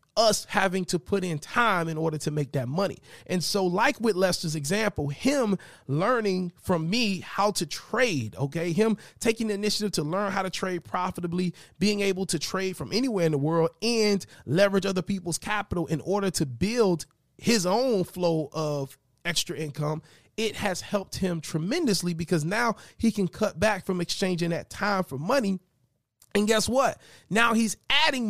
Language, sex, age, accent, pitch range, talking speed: English, male, 30-49, American, 160-205 Hz, 175 wpm